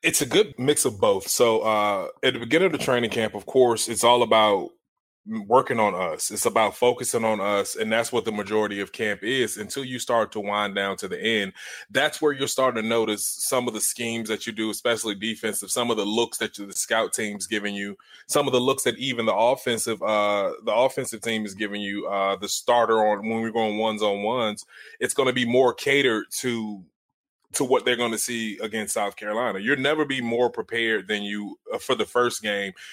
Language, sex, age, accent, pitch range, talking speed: English, male, 20-39, American, 105-125 Hz, 225 wpm